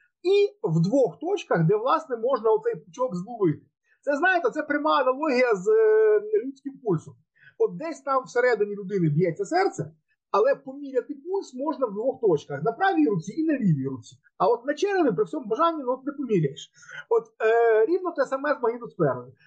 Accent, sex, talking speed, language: native, male, 175 wpm, Ukrainian